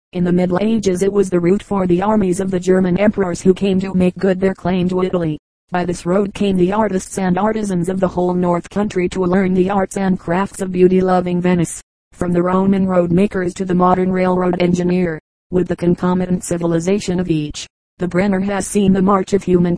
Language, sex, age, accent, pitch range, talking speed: English, female, 40-59, American, 180-195 Hz, 210 wpm